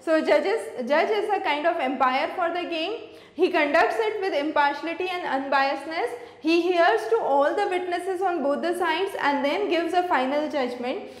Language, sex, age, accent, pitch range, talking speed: English, female, 20-39, Indian, 280-380 Hz, 175 wpm